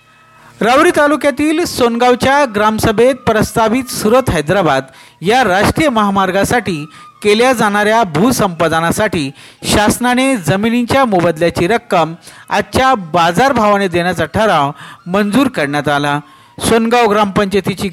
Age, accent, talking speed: 50-69, native, 85 wpm